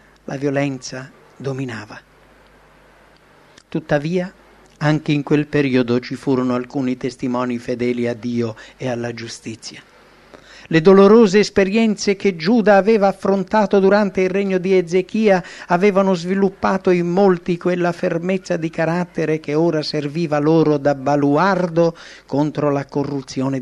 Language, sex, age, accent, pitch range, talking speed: English, male, 50-69, Italian, 130-180 Hz, 120 wpm